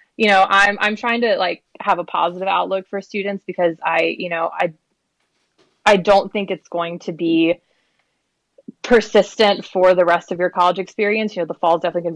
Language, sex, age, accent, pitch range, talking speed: English, female, 20-39, American, 165-195 Hz, 200 wpm